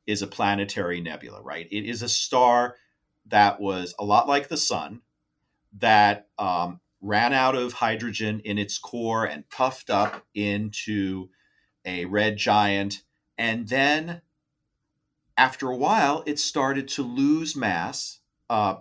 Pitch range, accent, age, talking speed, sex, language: 105-140 Hz, American, 40-59, 135 wpm, male, English